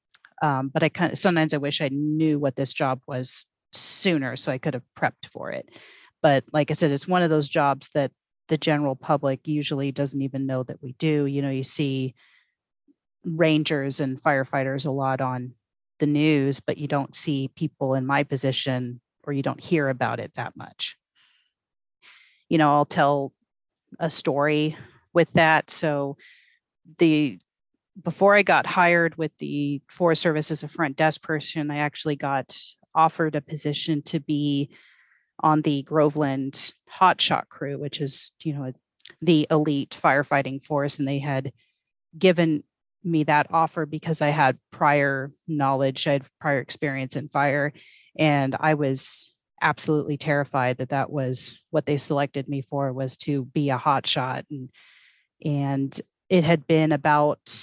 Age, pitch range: 30-49, 135-155 Hz